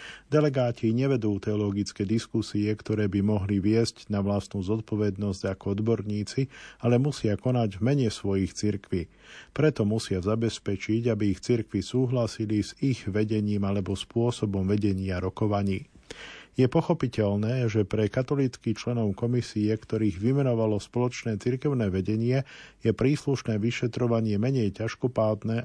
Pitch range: 105-120 Hz